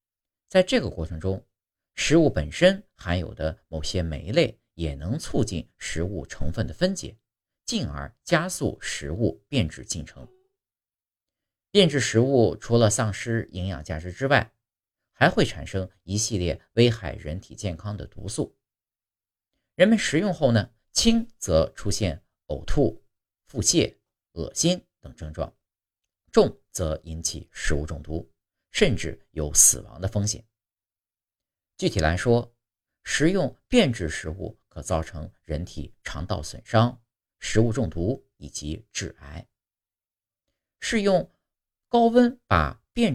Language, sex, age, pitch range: Chinese, male, 50-69, 85-120 Hz